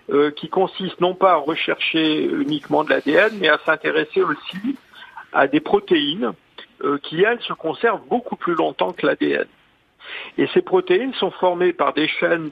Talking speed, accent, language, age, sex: 170 wpm, French, French, 50-69, male